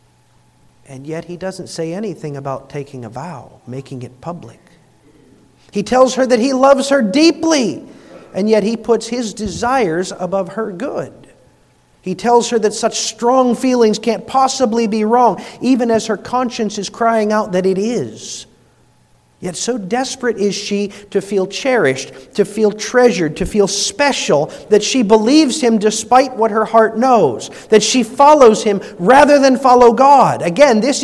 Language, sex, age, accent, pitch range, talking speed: English, male, 50-69, American, 170-245 Hz, 160 wpm